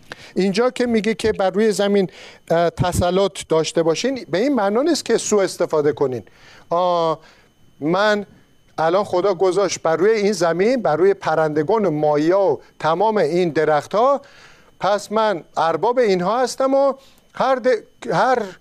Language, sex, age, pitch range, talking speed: Persian, male, 50-69, 170-235 Hz, 140 wpm